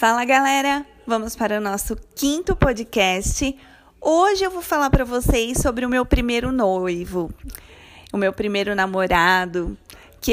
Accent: Brazilian